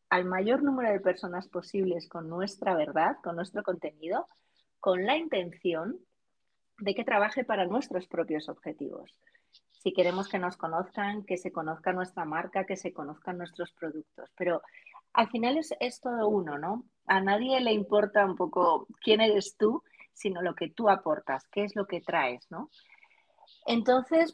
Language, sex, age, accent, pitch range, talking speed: Spanish, female, 30-49, Spanish, 175-230 Hz, 165 wpm